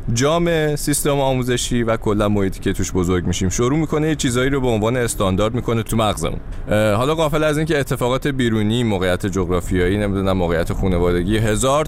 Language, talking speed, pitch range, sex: Persian, 160 wpm, 90-135 Hz, male